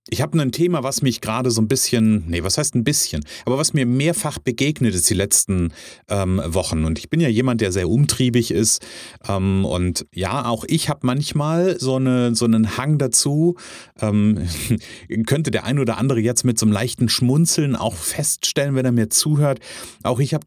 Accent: German